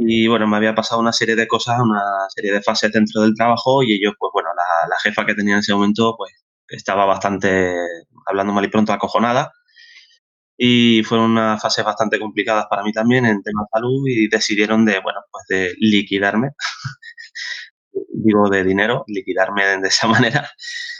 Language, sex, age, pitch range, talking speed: Spanish, male, 20-39, 110-135 Hz, 180 wpm